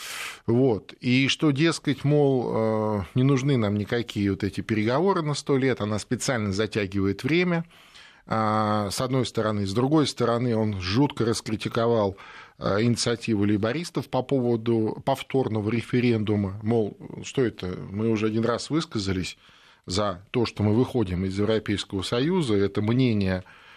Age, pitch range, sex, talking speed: 20-39, 105-135 Hz, male, 130 wpm